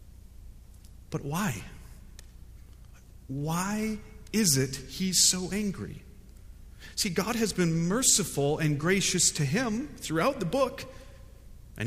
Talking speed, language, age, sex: 105 wpm, English, 40-59, male